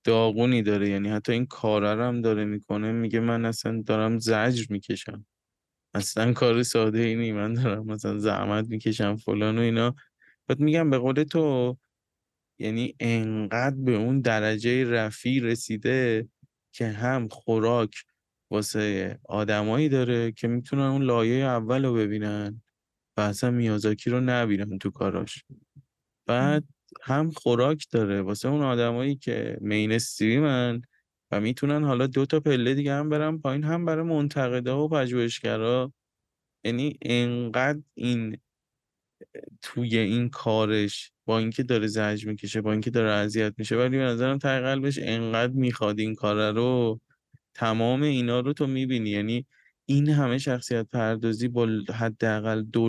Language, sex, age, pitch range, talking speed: Persian, male, 20-39, 110-130 Hz, 140 wpm